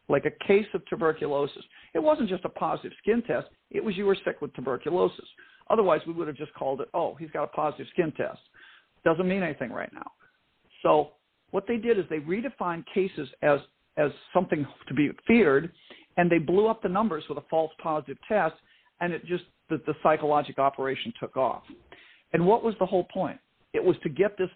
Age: 50-69